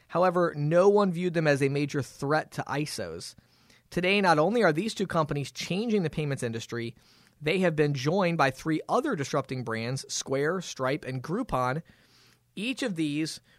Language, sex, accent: English, male, American